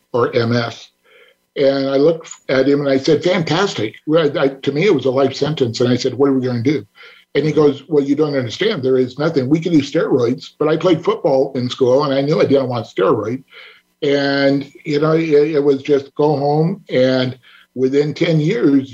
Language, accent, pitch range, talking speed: English, American, 135-155 Hz, 210 wpm